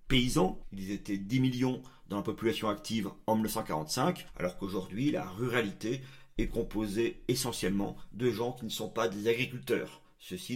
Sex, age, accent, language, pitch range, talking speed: male, 50-69, French, French, 110-155 Hz, 150 wpm